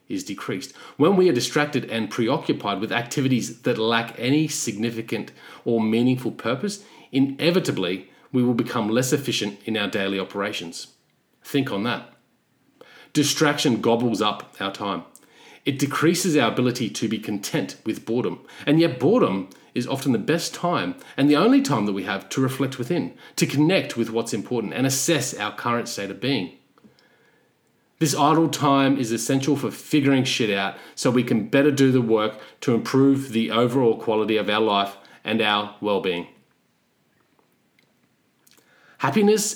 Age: 40-59